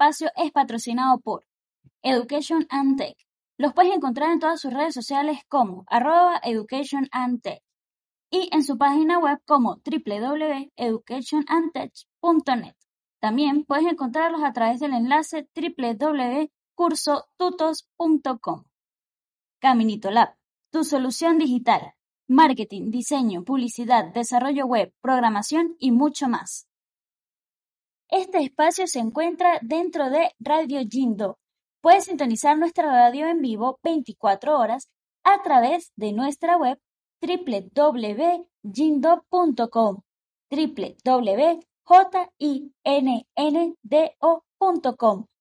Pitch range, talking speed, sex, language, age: 245-325 Hz, 90 wpm, female, Spanish, 10-29